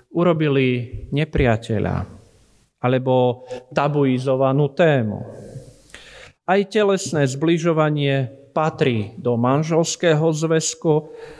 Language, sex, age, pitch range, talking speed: Slovak, male, 40-59, 130-170 Hz, 65 wpm